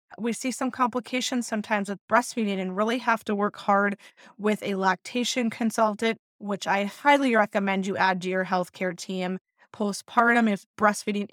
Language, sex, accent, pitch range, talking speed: English, female, American, 195-235 Hz, 160 wpm